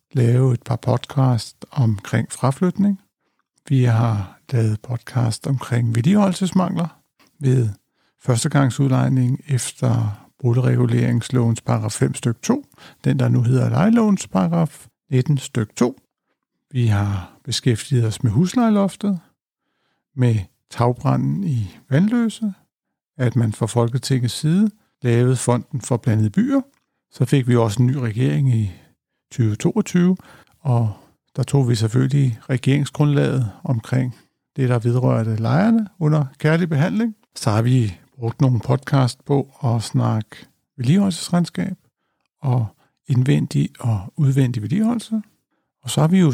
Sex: male